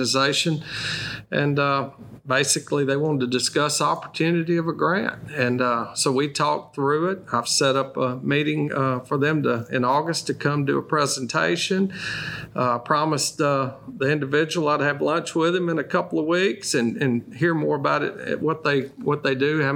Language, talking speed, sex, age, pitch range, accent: English, 190 wpm, male, 40-59, 130-155 Hz, American